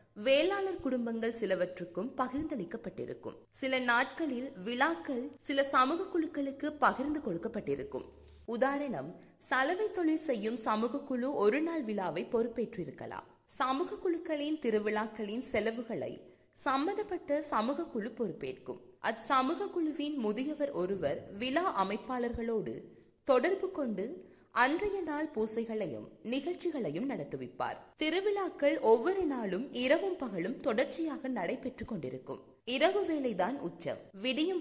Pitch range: 225-315 Hz